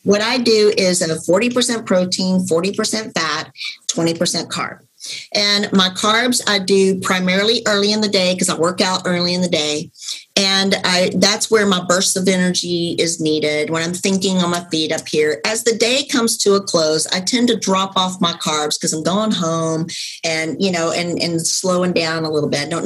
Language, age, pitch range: English, 40-59, 165-205 Hz